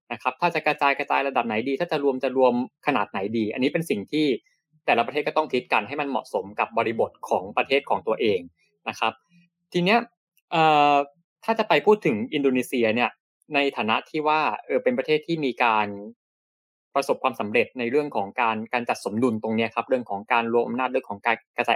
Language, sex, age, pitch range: Thai, male, 20-39, 115-155 Hz